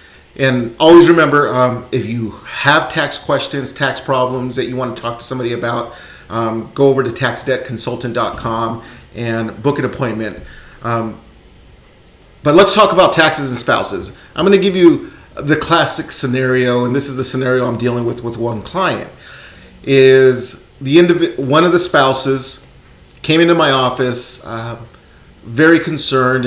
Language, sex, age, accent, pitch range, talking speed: English, male, 40-59, American, 115-140 Hz, 160 wpm